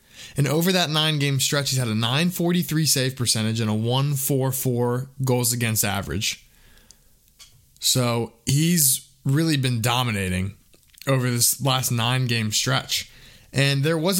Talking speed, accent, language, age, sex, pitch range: 125 wpm, American, English, 20-39, male, 120-140 Hz